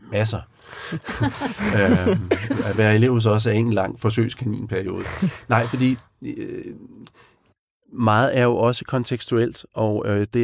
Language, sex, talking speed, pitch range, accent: Danish, male, 125 wpm, 95-120 Hz, native